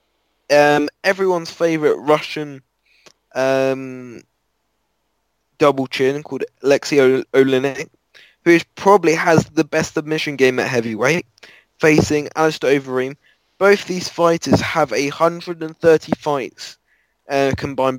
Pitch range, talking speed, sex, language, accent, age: 135-165 Hz, 105 wpm, male, English, British, 10-29